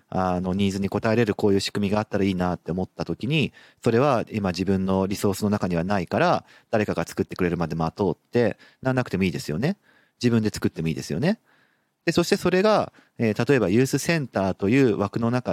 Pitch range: 95-130 Hz